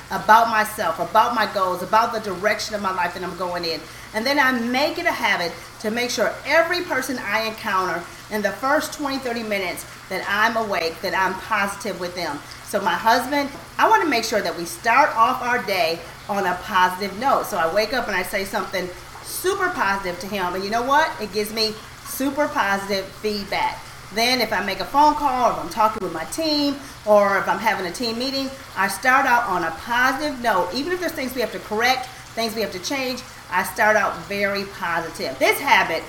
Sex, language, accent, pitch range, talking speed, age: female, English, American, 190-265 Hz, 220 wpm, 40-59